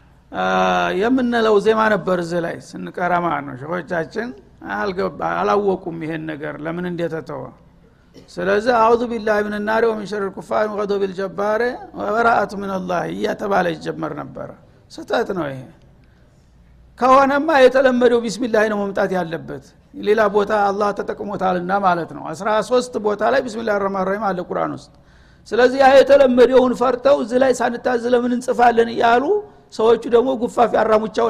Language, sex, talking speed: Amharic, male, 130 wpm